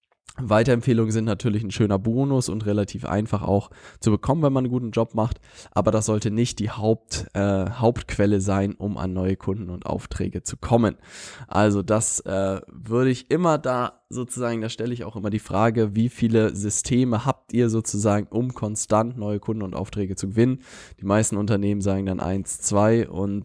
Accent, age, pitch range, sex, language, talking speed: German, 10-29, 100-115 Hz, male, German, 185 wpm